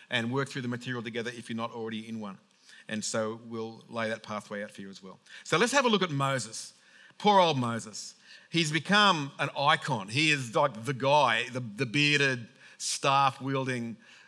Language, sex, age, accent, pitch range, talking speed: English, male, 50-69, Australian, 130-170 Hz, 195 wpm